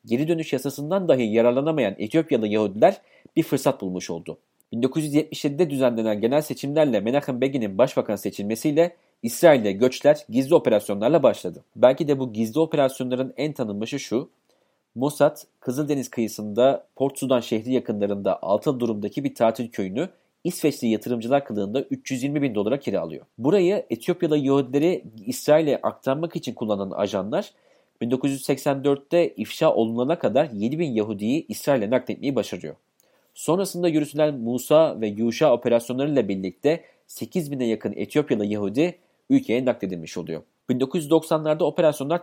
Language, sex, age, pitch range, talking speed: Turkish, male, 40-59, 115-150 Hz, 120 wpm